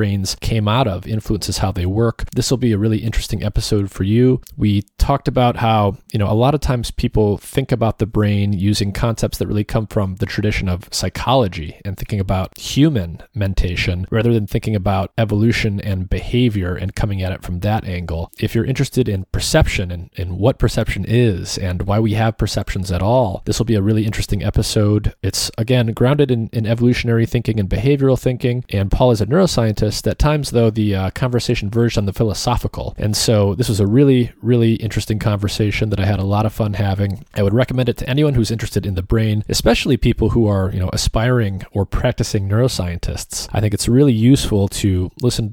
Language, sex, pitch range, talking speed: English, male, 100-120 Hz, 205 wpm